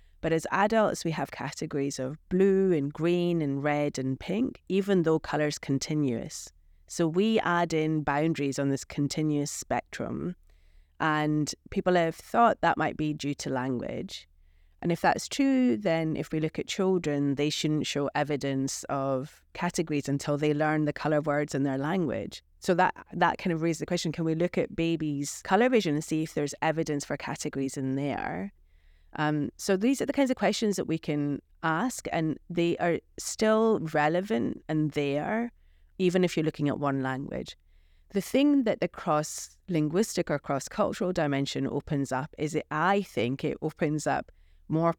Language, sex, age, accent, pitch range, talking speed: English, female, 30-49, British, 140-170 Hz, 175 wpm